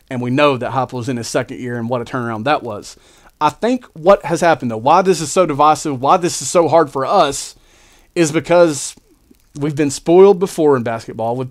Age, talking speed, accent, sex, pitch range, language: 30-49, 225 wpm, American, male, 130-160 Hz, English